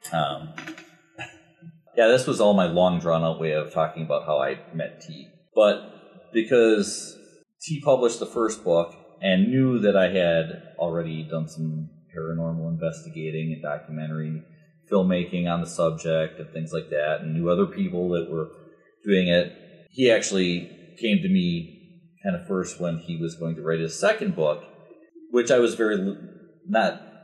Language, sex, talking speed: English, male, 160 wpm